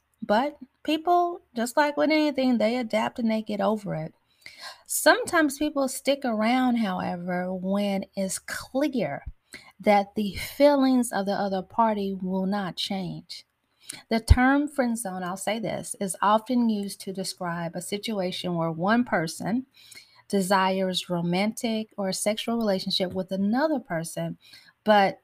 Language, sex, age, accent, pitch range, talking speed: English, female, 30-49, American, 190-255 Hz, 135 wpm